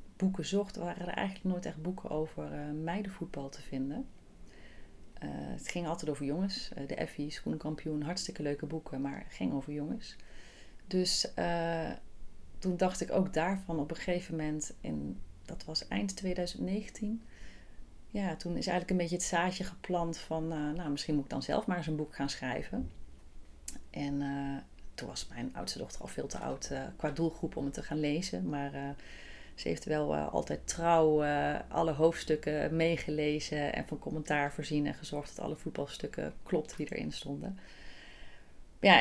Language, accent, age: Dutch, Dutch, 30-49